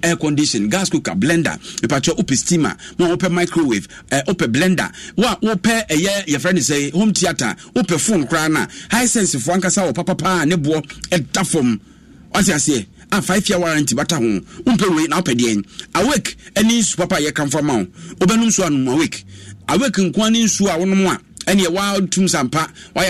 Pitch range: 145-195 Hz